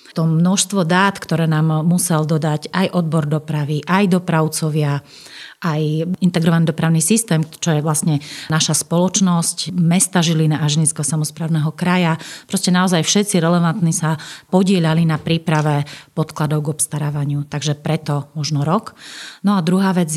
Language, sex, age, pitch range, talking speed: Slovak, female, 30-49, 155-180 Hz, 135 wpm